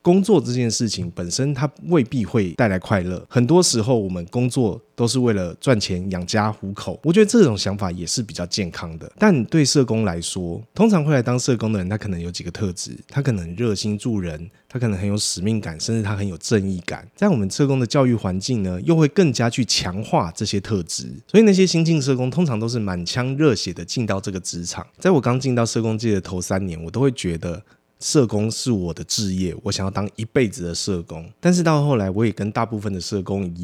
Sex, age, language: male, 20-39, Chinese